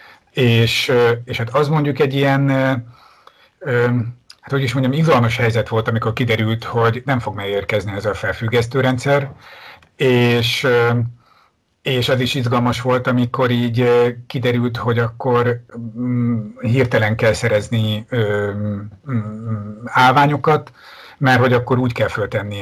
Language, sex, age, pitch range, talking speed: Hungarian, male, 50-69, 110-125 Hz, 120 wpm